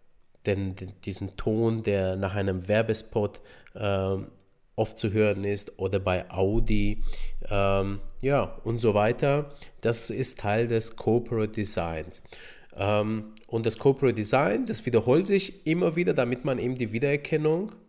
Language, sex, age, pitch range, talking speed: German, male, 30-49, 100-140 Hz, 140 wpm